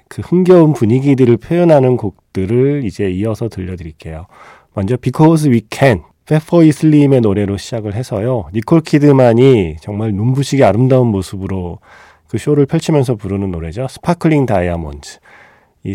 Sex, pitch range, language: male, 95-135 Hz, Korean